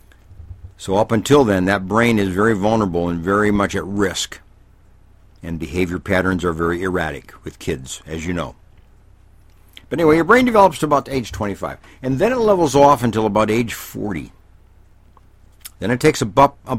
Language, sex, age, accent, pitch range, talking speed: English, male, 60-79, American, 90-115 Hz, 170 wpm